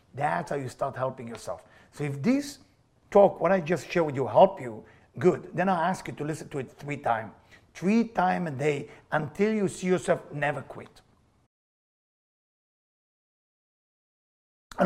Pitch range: 160-230 Hz